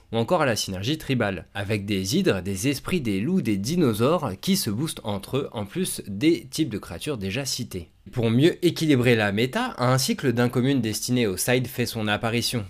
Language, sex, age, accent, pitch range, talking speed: French, male, 20-39, French, 100-135 Hz, 205 wpm